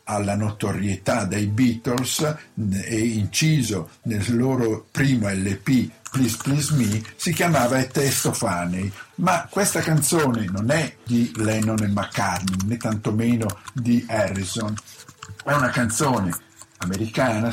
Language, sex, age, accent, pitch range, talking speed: Italian, male, 50-69, native, 105-135 Hz, 120 wpm